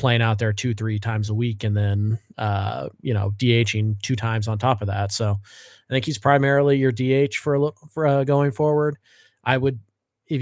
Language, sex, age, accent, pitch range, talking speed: English, male, 20-39, American, 115-130 Hz, 205 wpm